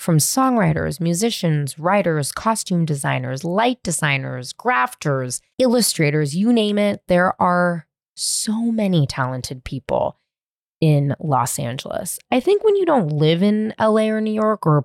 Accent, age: American, 20-39